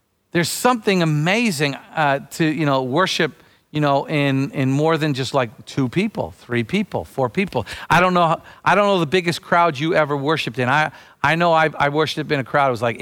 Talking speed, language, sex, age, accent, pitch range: 220 wpm, English, male, 50-69, American, 130-195 Hz